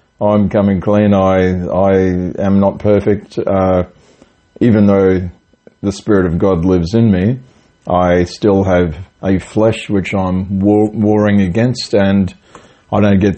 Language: English